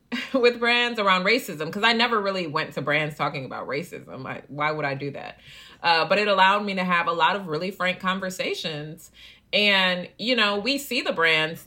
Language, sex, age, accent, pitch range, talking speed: English, female, 30-49, American, 160-205 Hz, 205 wpm